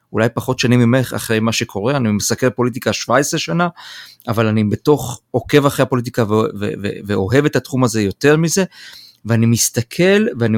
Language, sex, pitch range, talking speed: Hebrew, male, 115-145 Hz, 170 wpm